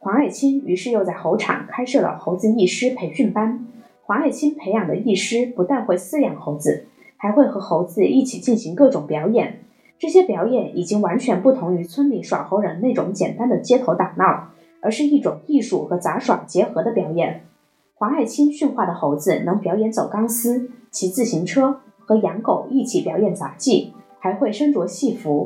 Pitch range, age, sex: 195-275 Hz, 20-39, female